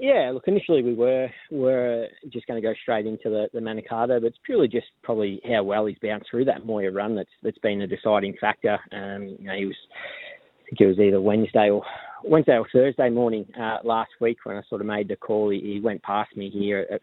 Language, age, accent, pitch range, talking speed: English, 20-39, Australian, 105-120 Hz, 235 wpm